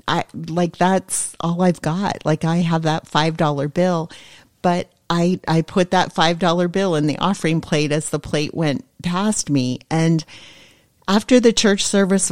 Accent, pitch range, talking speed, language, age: American, 155-185 Hz, 165 wpm, English, 40-59